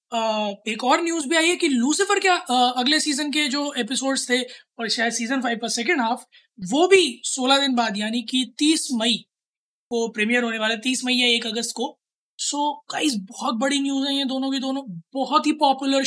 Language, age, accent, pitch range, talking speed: Hindi, 20-39, native, 225-270 Hz, 215 wpm